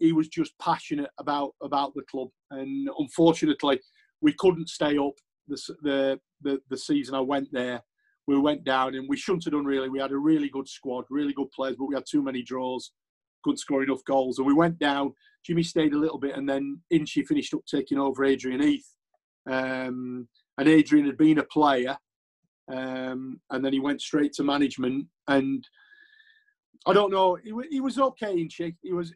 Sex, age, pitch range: male, 40-59, 135-175 Hz